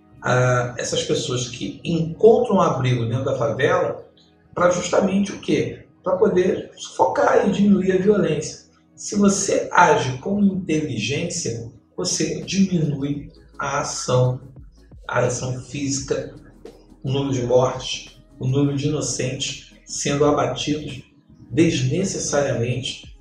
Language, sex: Portuguese, male